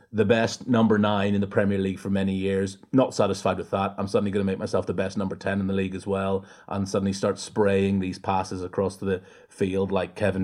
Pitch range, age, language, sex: 95-110 Hz, 30-49, English, male